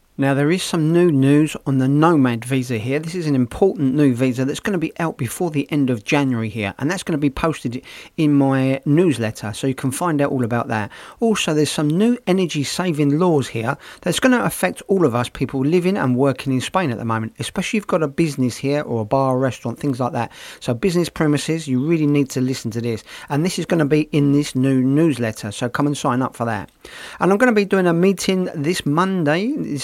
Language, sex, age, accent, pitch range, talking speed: English, male, 40-59, British, 130-165 Hz, 240 wpm